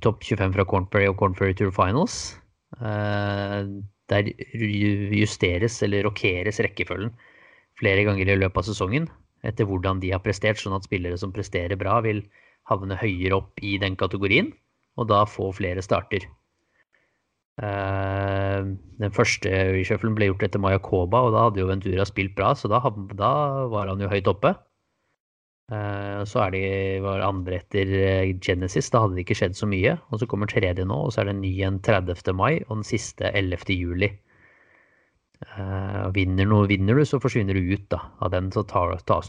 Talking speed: 175 wpm